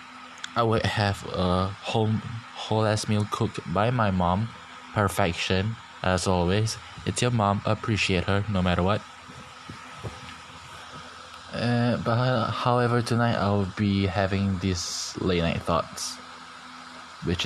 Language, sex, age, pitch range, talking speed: English, male, 20-39, 90-110 Hz, 120 wpm